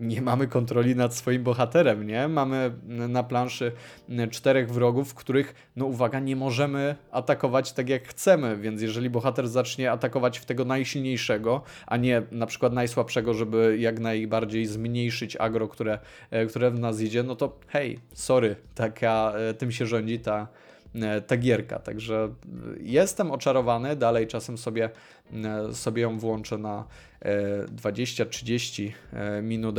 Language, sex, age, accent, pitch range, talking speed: Polish, male, 20-39, native, 110-130 Hz, 135 wpm